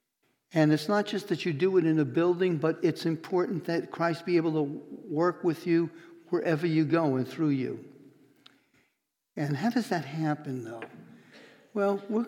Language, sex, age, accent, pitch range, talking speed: English, male, 60-79, American, 140-170 Hz, 175 wpm